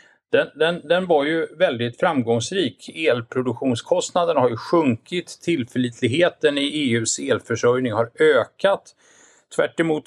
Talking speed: 115 wpm